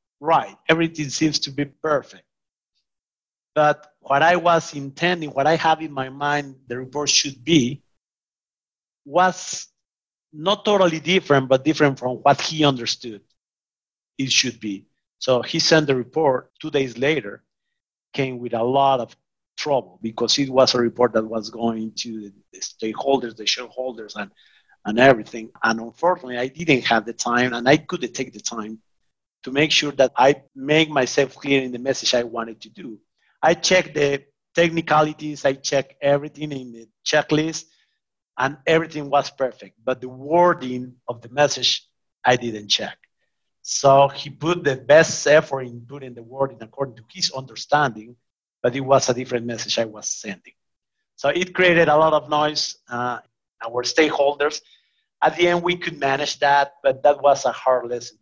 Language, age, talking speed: English, 50-69, 165 wpm